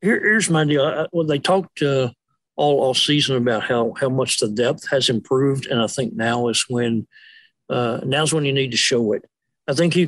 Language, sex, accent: English, male, American